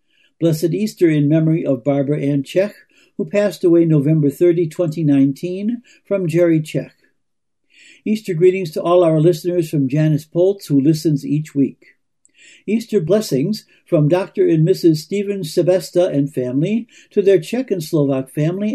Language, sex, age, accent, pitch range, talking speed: English, male, 60-79, American, 150-190 Hz, 145 wpm